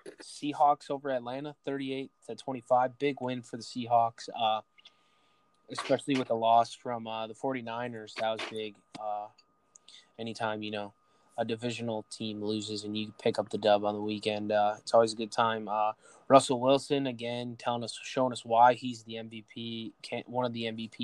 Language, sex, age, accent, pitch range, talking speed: English, male, 20-39, American, 110-125 Hz, 170 wpm